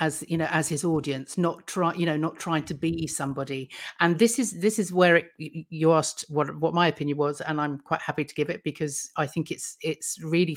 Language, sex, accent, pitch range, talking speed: English, female, British, 145-165 Hz, 240 wpm